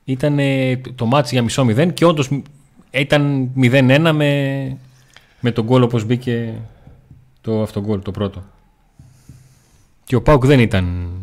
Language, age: Greek, 30-49